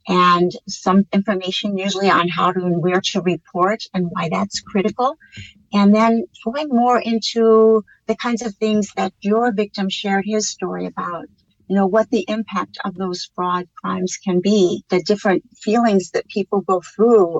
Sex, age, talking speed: female, 50-69, 170 wpm